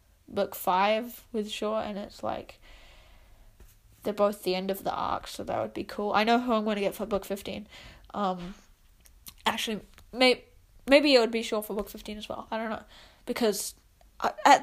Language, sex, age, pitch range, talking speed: English, female, 10-29, 205-240 Hz, 195 wpm